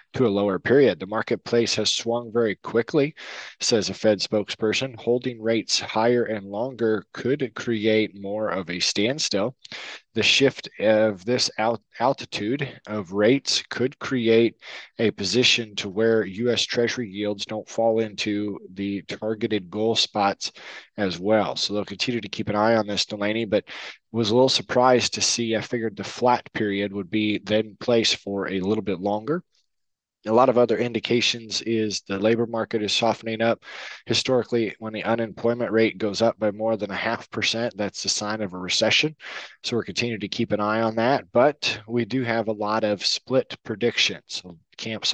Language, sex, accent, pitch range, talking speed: English, male, American, 105-115 Hz, 175 wpm